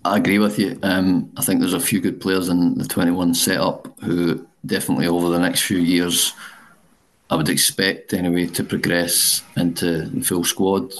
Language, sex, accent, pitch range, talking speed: English, male, British, 80-90 Hz, 180 wpm